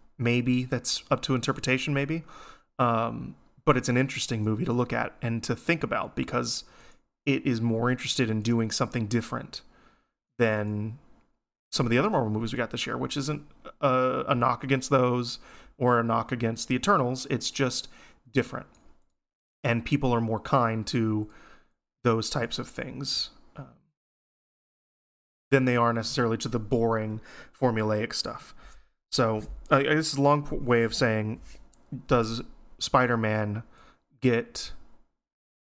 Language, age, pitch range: English, 30-49, 115-135 Hz